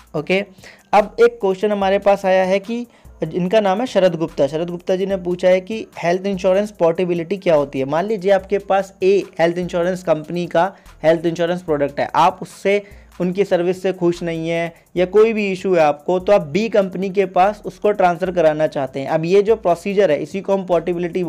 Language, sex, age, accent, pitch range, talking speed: Hindi, male, 20-39, native, 165-200 Hz, 210 wpm